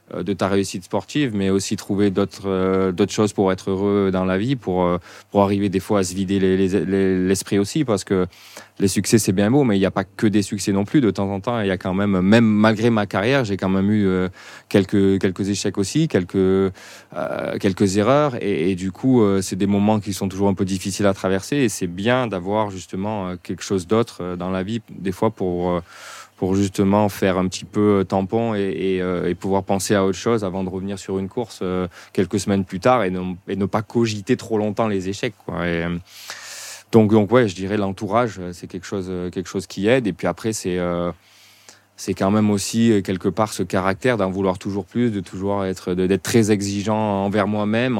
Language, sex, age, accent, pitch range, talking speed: French, male, 20-39, French, 95-105 Hz, 230 wpm